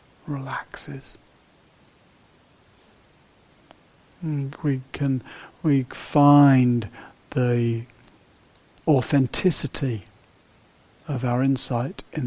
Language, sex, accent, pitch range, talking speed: English, male, British, 120-145 Hz, 55 wpm